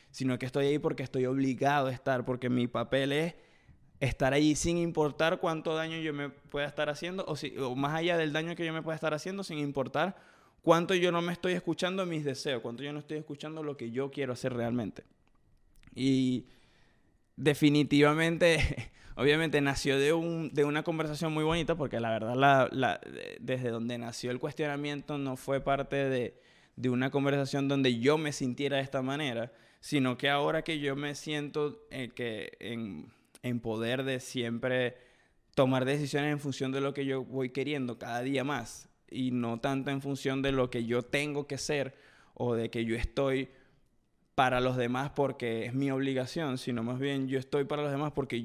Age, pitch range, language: 20-39, 130-150 Hz, Spanish